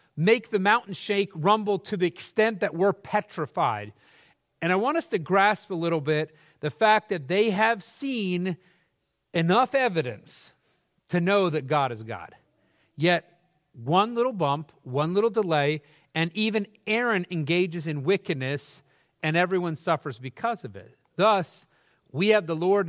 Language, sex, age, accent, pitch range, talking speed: English, male, 40-59, American, 140-190 Hz, 150 wpm